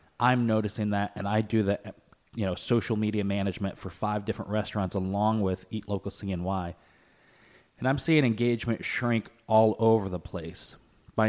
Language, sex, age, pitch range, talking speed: English, male, 30-49, 95-110 Hz, 165 wpm